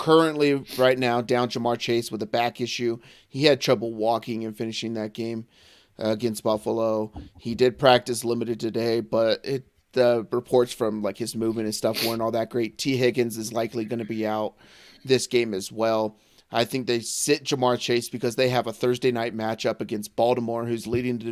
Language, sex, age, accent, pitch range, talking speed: English, male, 30-49, American, 110-125 Hz, 195 wpm